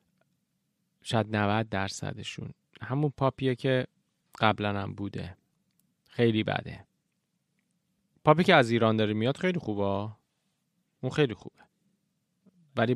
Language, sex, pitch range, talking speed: Persian, male, 110-150 Hz, 105 wpm